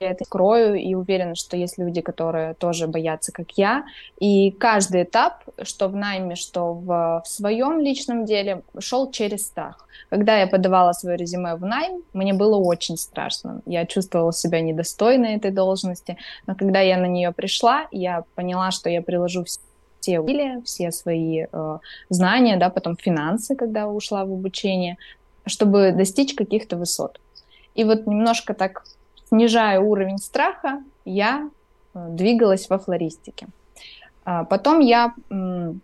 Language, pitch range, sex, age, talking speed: Russian, 175-225 Hz, female, 20-39, 140 wpm